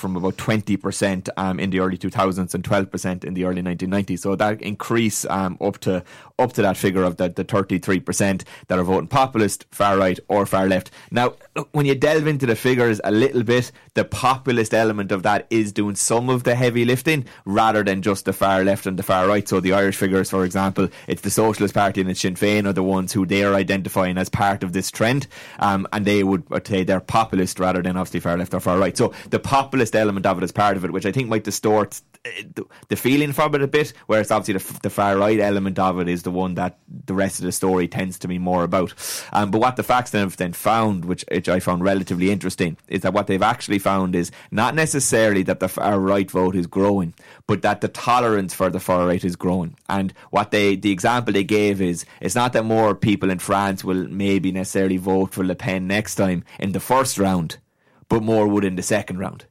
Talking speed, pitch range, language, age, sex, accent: 230 wpm, 95-105 Hz, English, 20-39, male, Irish